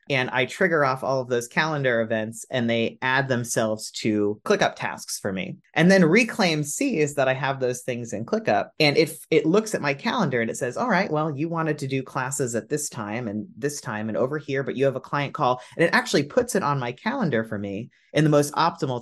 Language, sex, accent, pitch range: English, male, American, 115-165 Hz